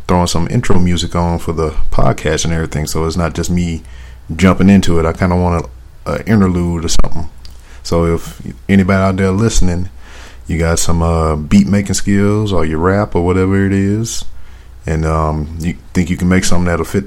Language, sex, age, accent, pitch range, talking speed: English, male, 40-59, American, 80-95 Hz, 195 wpm